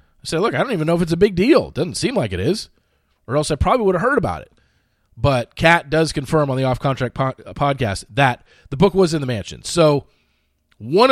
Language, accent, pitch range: English, American, 110-160 Hz